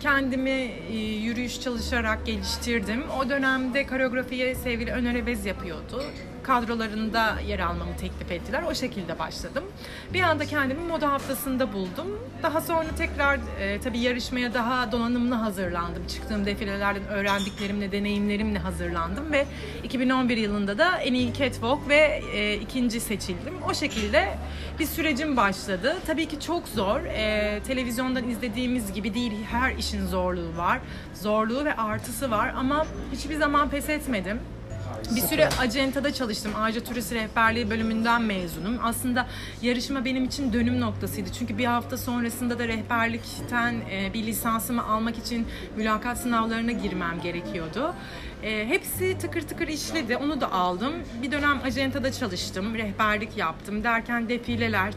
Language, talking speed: Turkish, 130 wpm